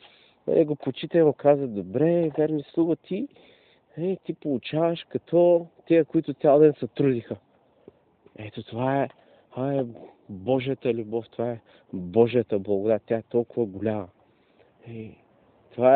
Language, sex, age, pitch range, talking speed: Bulgarian, male, 40-59, 115-140 Hz, 130 wpm